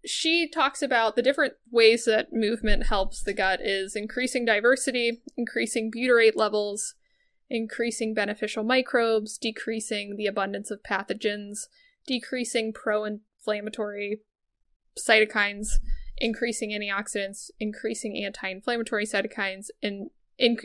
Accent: American